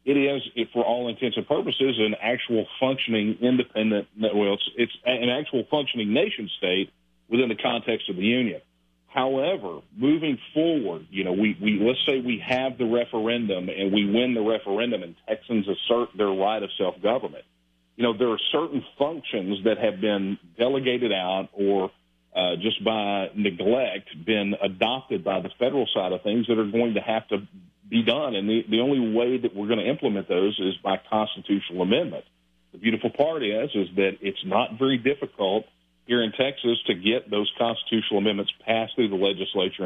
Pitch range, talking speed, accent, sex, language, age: 95-120 Hz, 180 wpm, American, male, English, 50-69